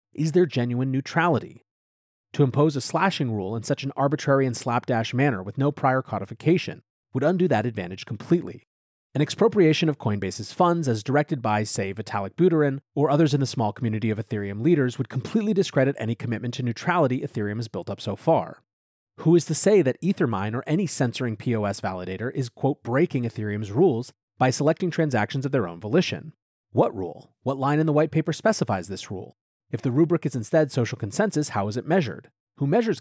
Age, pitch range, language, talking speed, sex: 30-49, 110-155 Hz, English, 190 wpm, male